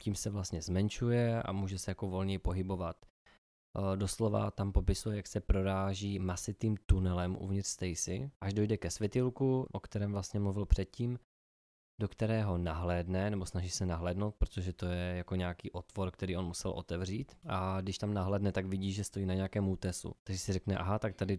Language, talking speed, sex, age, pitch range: Czech, 180 wpm, male, 20-39, 95-105 Hz